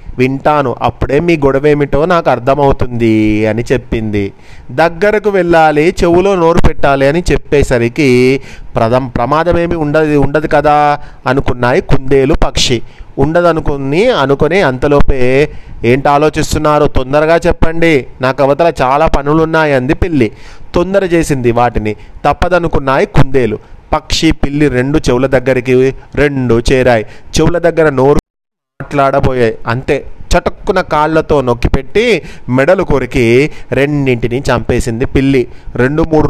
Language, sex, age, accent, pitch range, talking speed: Telugu, male, 30-49, native, 125-155 Hz, 105 wpm